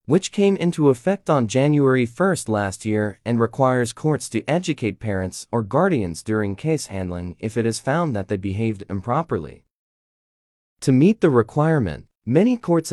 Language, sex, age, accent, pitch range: Chinese, male, 30-49, American, 110-155 Hz